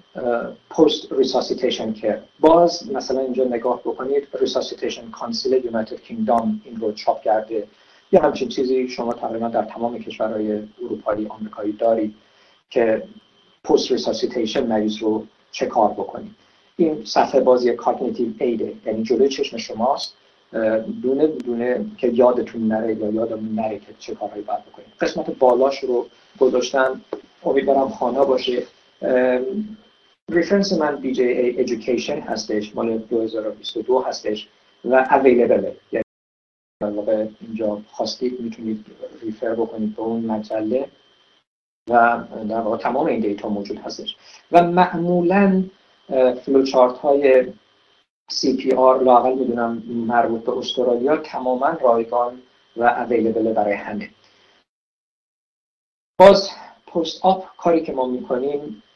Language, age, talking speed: Persian, 50-69, 120 wpm